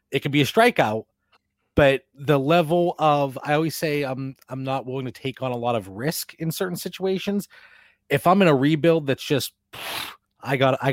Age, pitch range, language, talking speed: 30-49, 130-160 Hz, English, 210 wpm